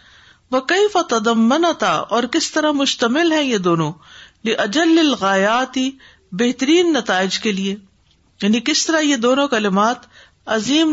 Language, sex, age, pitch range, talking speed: Urdu, female, 50-69, 185-260 Hz, 120 wpm